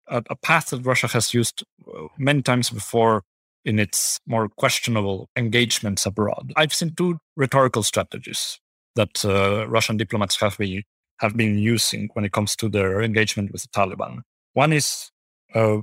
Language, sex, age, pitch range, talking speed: English, male, 30-49, 100-125 Hz, 150 wpm